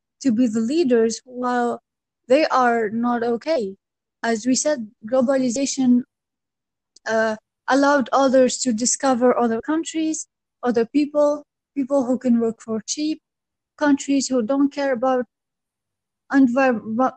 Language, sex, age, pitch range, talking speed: English, female, 20-39, 235-270 Hz, 120 wpm